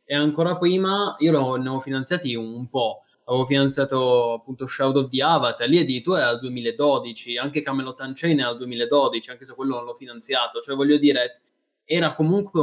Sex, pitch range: male, 125-145 Hz